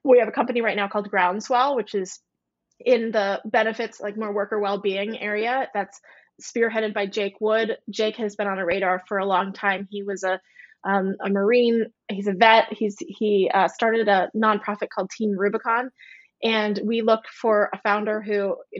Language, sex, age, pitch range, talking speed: English, female, 20-39, 195-225 Hz, 190 wpm